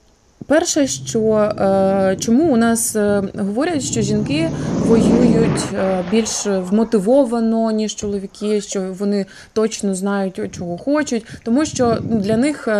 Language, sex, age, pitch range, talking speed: Ukrainian, female, 20-39, 195-230 Hz, 110 wpm